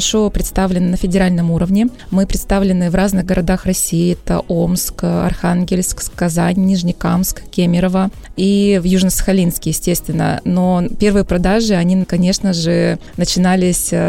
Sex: female